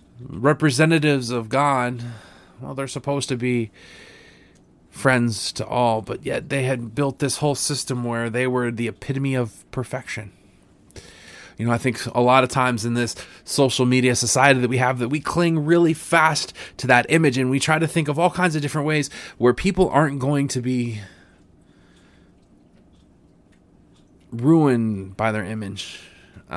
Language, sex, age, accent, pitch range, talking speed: English, male, 20-39, American, 120-140 Hz, 165 wpm